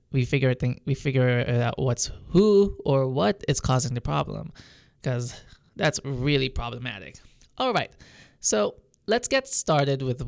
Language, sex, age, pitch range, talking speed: English, male, 20-39, 125-155 Hz, 145 wpm